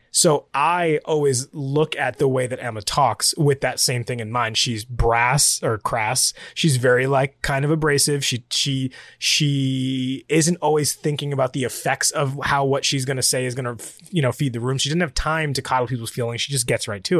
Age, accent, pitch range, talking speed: 20-39, American, 130-170 Hz, 220 wpm